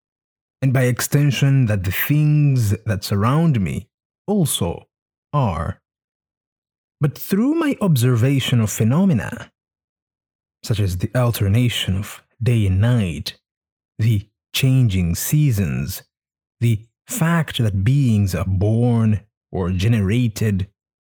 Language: English